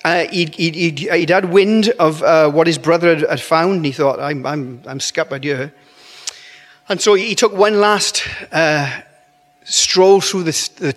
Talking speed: 190 wpm